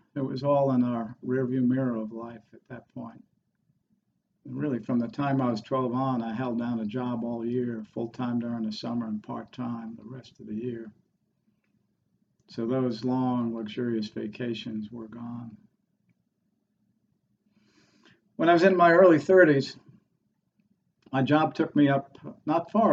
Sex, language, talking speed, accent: male, English, 165 wpm, American